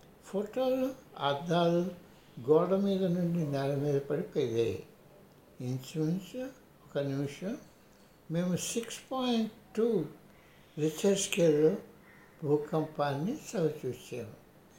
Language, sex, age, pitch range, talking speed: Telugu, male, 60-79, 145-195 Hz, 80 wpm